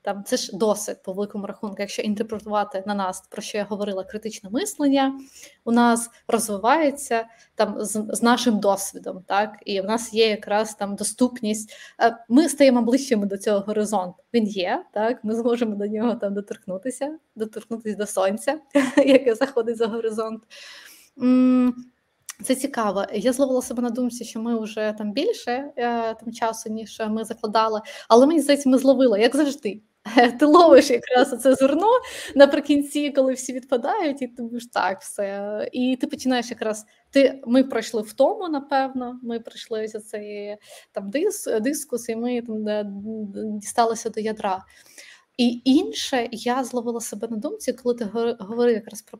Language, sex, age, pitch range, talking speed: Ukrainian, female, 20-39, 215-260 Hz, 155 wpm